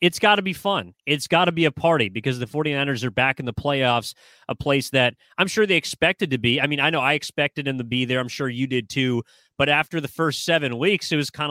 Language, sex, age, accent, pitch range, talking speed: English, male, 30-49, American, 125-155 Hz, 270 wpm